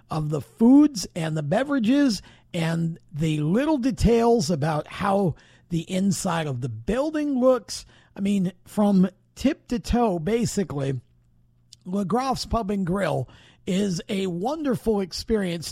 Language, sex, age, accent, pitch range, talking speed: English, male, 50-69, American, 165-235 Hz, 125 wpm